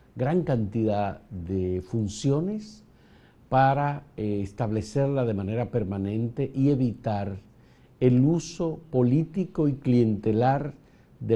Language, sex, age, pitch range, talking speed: Spanish, male, 50-69, 105-135 Hz, 95 wpm